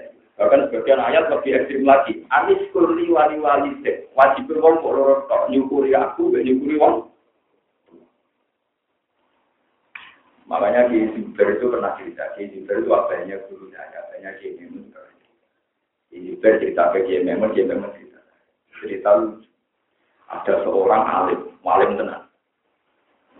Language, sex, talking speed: Indonesian, male, 115 wpm